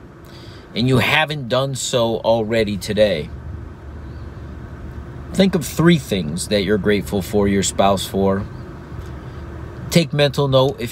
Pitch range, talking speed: 110-140 Hz, 120 wpm